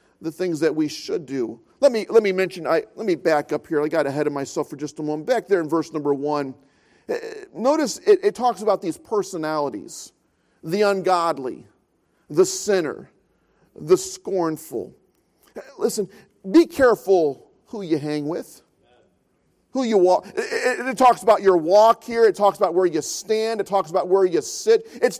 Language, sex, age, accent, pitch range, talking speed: English, male, 40-59, American, 155-225 Hz, 180 wpm